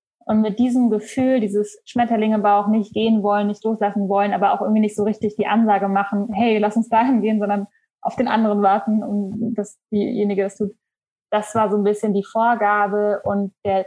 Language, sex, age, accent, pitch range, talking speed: German, female, 10-29, German, 200-230 Hz, 200 wpm